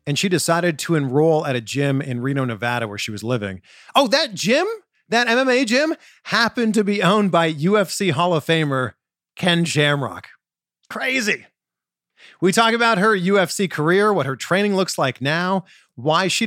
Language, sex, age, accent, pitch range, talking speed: English, male, 40-59, American, 130-190 Hz, 170 wpm